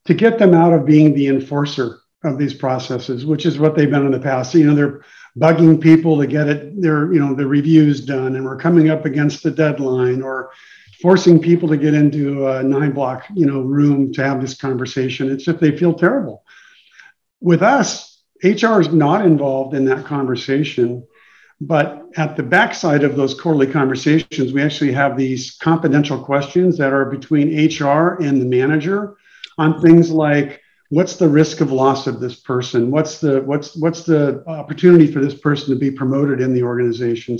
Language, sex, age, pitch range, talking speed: English, male, 50-69, 135-160 Hz, 185 wpm